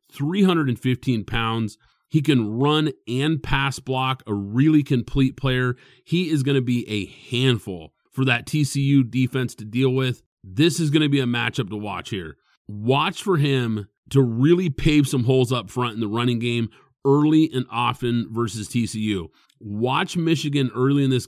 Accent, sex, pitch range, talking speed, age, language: American, male, 115-140 Hz, 170 wpm, 30-49, English